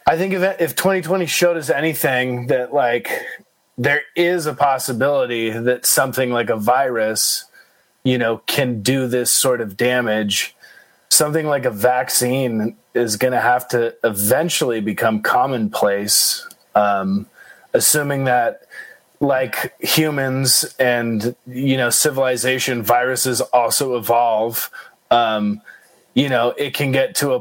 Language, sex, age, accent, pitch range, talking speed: English, male, 20-39, American, 115-140 Hz, 130 wpm